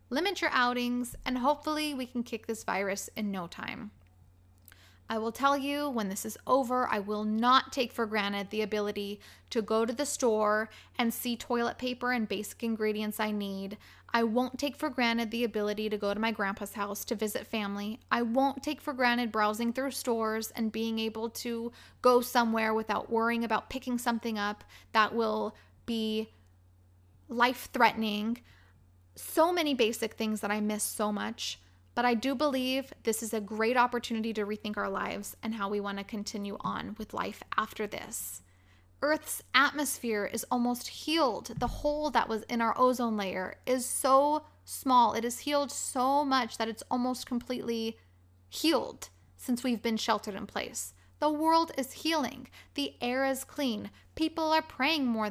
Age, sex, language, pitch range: 20-39, female, English, 210-255 Hz